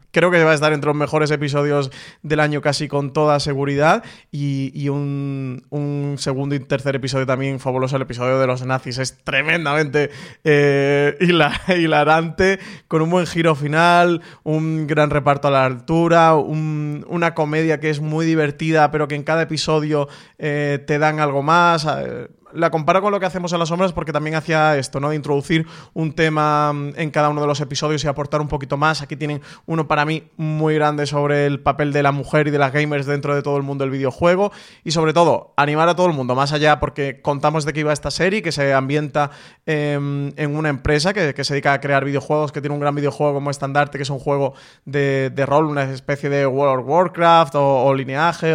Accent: Spanish